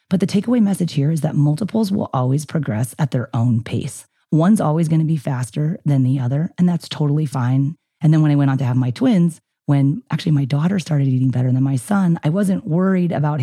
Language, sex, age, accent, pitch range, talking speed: English, female, 30-49, American, 125-155 Hz, 230 wpm